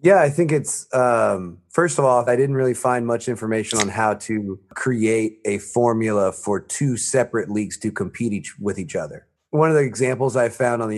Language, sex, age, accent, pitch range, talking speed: English, male, 30-49, American, 105-125 Hz, 210 wpm